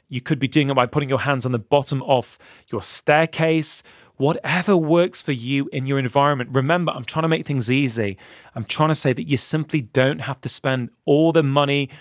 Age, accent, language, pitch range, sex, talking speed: 30-49, British, English, 130-165 Hz, male, 215 wpm